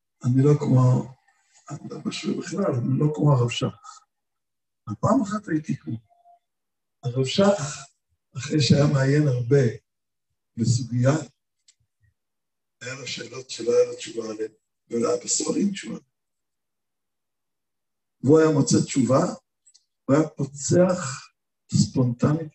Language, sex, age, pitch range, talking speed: Hebrew, male, 60-79, 130-165 Hz, 115 wpm